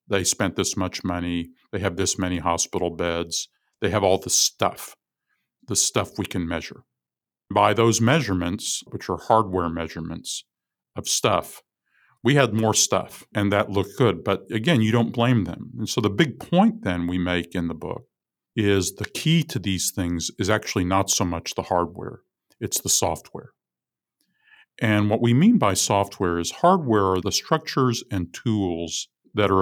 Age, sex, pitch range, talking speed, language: 50-69, male, 90-110 Hz, 175 wpm, English